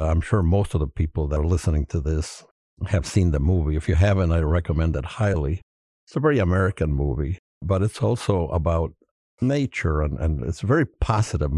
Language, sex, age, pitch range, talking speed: English, male, 60-79, 80-100 Hz, 195 wpm